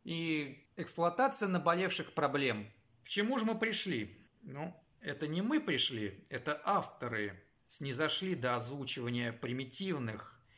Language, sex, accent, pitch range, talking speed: Russian, male, native, 125-185 Hz, 115 wpm